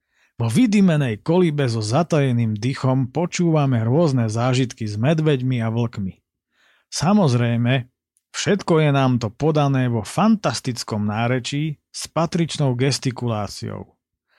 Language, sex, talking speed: Slovak, male, 105 wpm